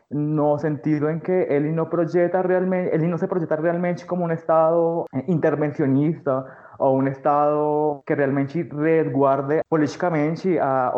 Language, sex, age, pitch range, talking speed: Portuguese, male, 20-39, 140-160 Hz, 130 wpm